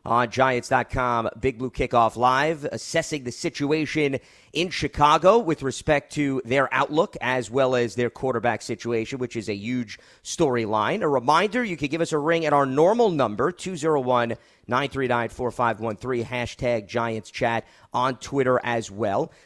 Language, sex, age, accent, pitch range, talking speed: English, male, 40-59, American, 110-140 Hz, 145 wpm